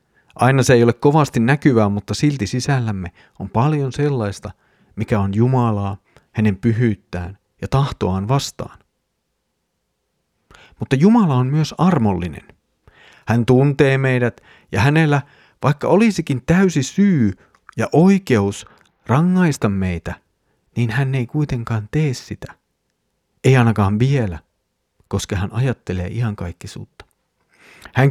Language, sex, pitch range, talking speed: Finnish, male, 105-145 Hz, 115 wpm